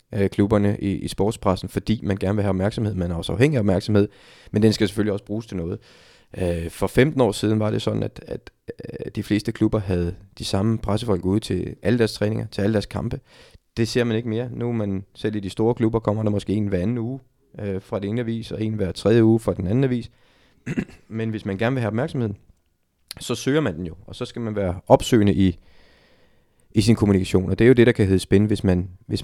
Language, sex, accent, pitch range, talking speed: Danish, male, native, 95-115 Hz, 240 wpm